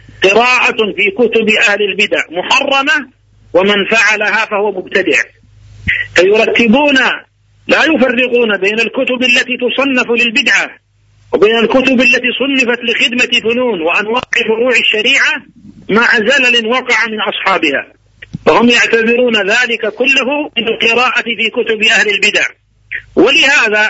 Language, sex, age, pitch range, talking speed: Arabic, male, 50-69, 210-250 Hz, 110 wpm